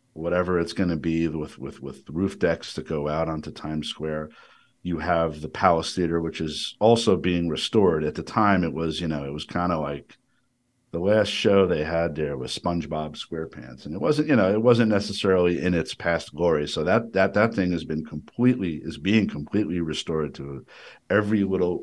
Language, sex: English, male